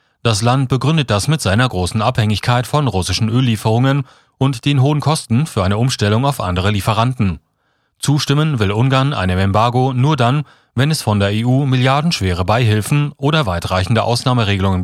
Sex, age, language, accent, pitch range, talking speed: male, 40-59, German, German, 100-135 Hz, 155 wpm